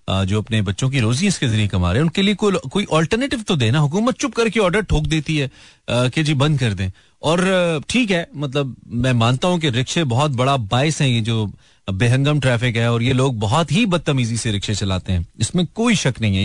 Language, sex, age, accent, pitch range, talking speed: Hindi, male, 30-49, native, 105-150 Hz, 225 wpm